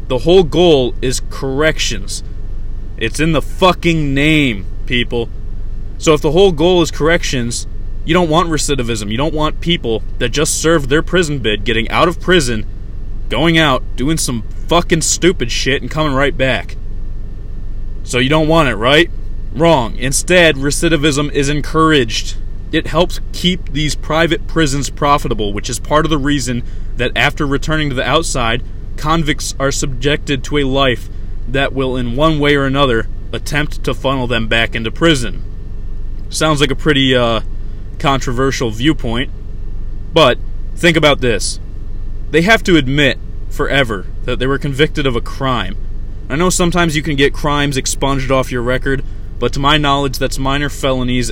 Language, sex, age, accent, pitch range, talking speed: English, male, 20-39, American, 100-150 Hz, 160 wpm